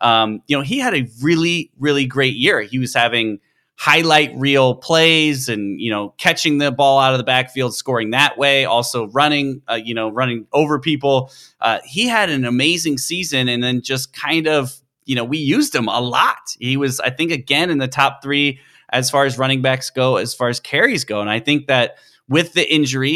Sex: male